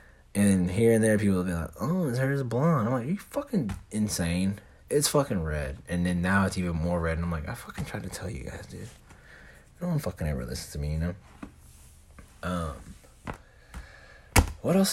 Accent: American